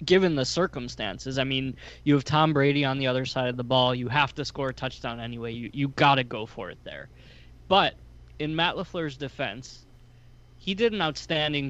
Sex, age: male, 20-39